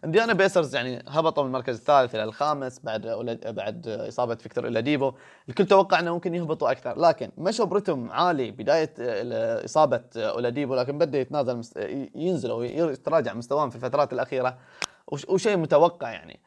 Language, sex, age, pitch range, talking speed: Arabic, male, 20-39, 120-150 Hz, 135 wpm